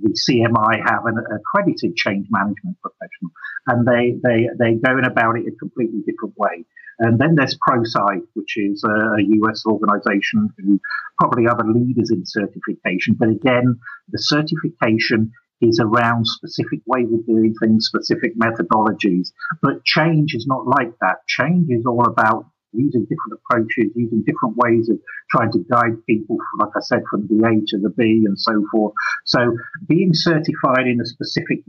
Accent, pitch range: British, 105-135 Hz